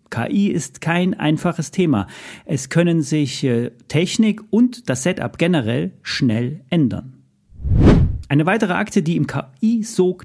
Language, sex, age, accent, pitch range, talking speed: German, male, 40-59, German, 125-170 Hz, 125 wpm